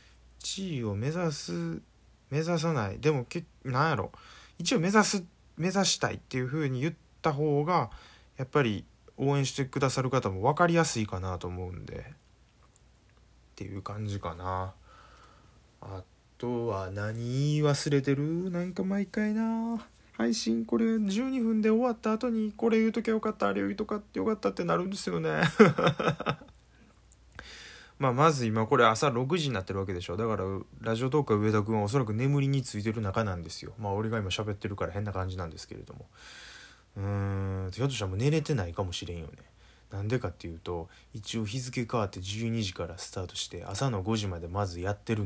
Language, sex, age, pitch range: Japanese, male, 20-39, 95-145 Hz